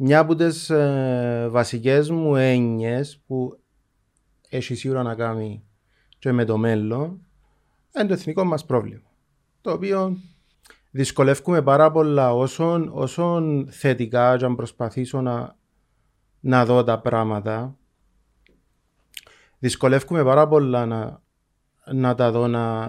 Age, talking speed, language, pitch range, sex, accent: 30-49, 115 wpm, Greek, 115-145 Hz, male, native